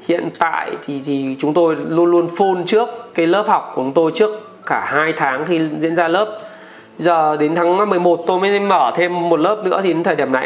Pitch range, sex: 155-215 Hz, male